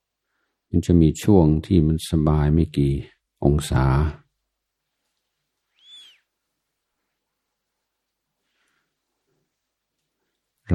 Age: 60-79